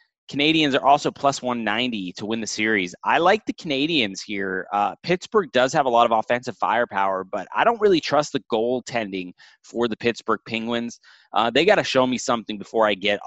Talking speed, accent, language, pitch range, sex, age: 200 wpm, American, English, 105-130 Hz, male, 20-39